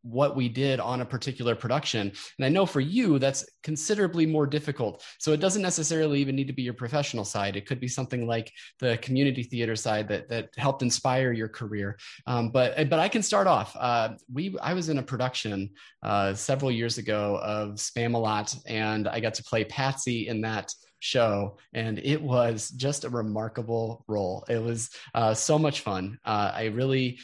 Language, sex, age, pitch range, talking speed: English, male, 20-39, 105-135 Hz, 190 wpm